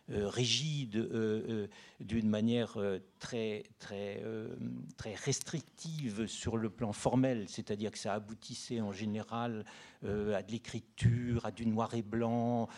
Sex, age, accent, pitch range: male, 60-79, French, 110-135 Hz